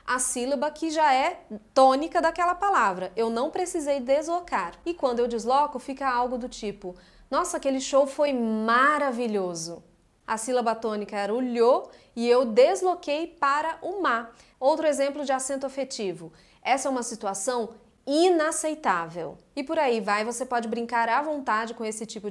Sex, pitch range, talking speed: female, 230-300 Hz, 160 wpm